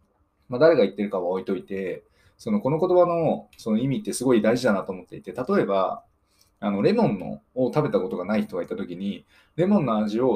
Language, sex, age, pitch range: Japanese, male, 20-39, 105-175 Hz